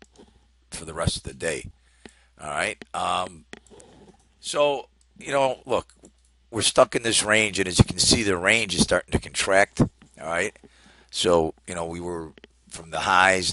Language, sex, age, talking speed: English, male, 50-69, 175 wpm